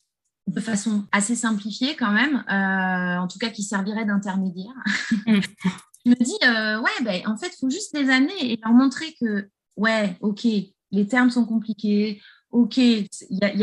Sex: female